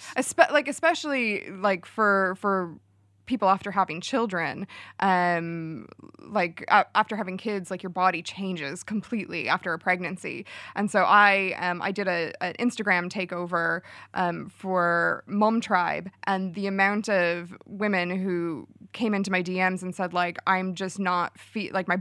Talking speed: 155 wpm